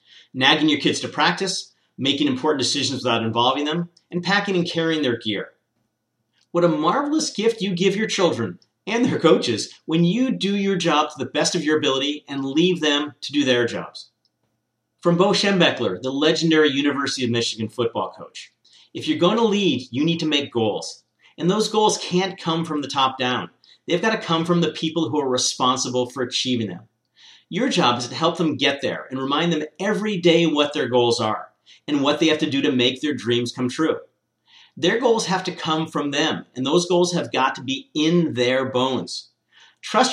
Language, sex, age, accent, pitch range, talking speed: English, male, 40-59, American, 125-170 Hz, 200 wpm